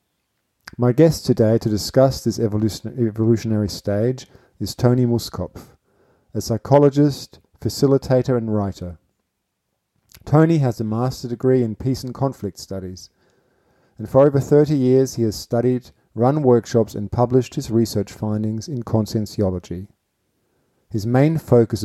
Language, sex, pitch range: English, male, 105-125 Hz